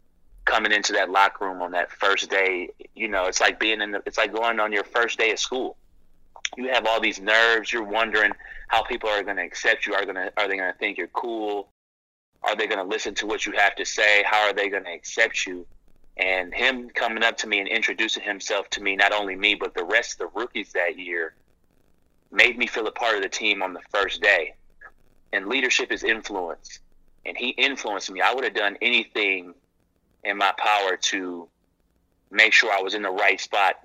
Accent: American